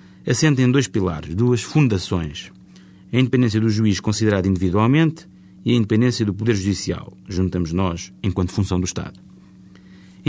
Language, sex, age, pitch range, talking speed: Portuguese, male, 30-49, 95-120 Hz, 145 wpm